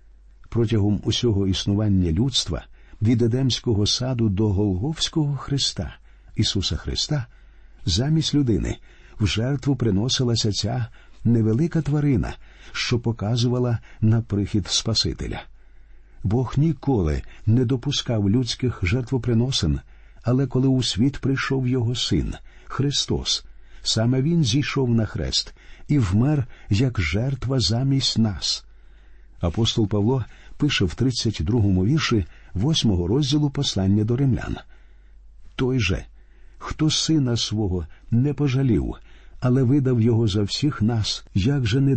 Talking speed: 110 wpm